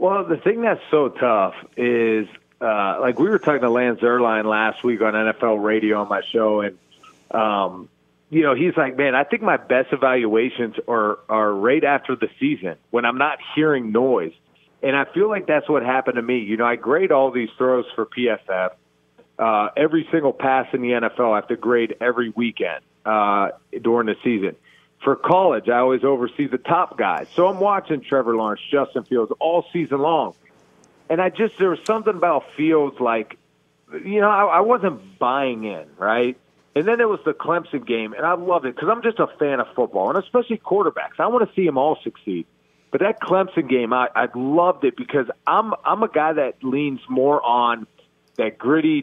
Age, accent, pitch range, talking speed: 40-59, American, 115-155 Hz, 200 wpm